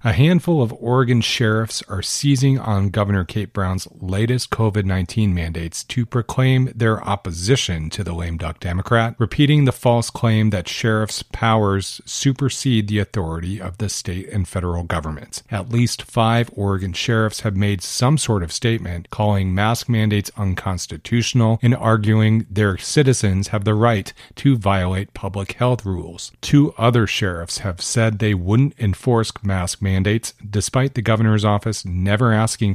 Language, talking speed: English, 150 wpm